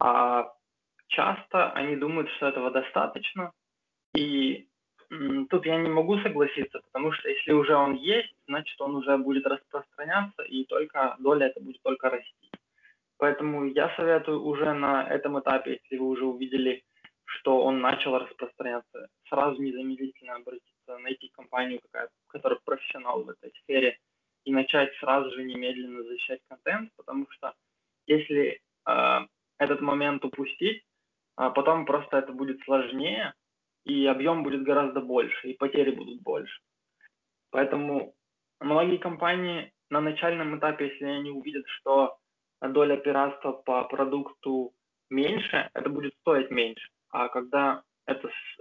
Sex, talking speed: male, 130 wpm